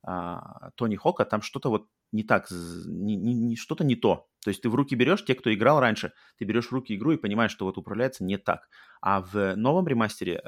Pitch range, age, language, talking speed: 100-120 Hz, 30-49, Russian, 205 wpm